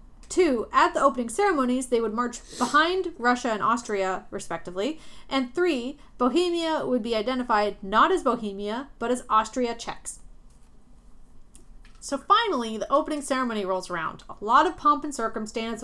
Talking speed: 145 wpm